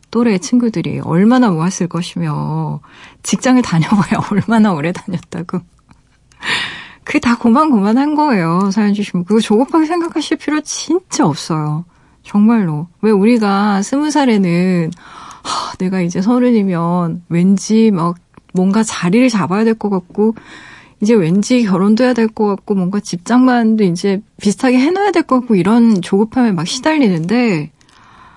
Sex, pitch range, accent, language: female, 170-225 Hz, native, Korean